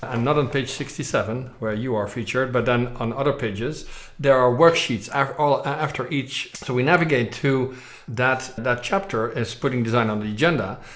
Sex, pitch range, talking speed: male, 115-140 Hz, 175 wpm